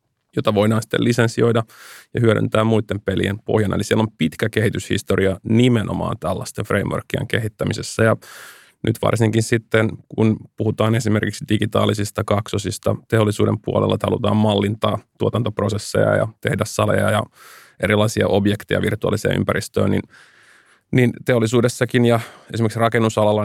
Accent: native